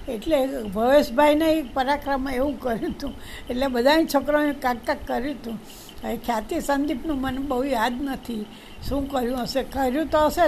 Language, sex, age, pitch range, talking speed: Gujarati, female, 60-79, 235-290 Hz, 150 wpm